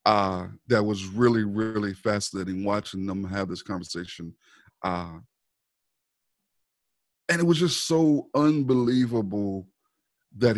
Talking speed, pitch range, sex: 110 wpm, 100-120 Hz, male